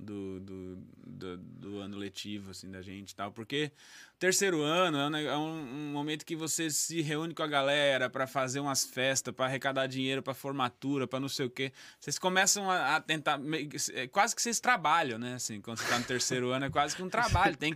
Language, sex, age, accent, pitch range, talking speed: Portuguese, male, 20-39, Brazilian, 120-175 Hz, 210 wpm